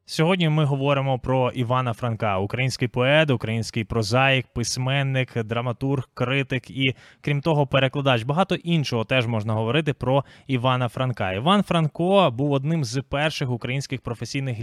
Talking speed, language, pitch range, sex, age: 135 wpm, Ukrainian, 125-150 Hz, male, 20-39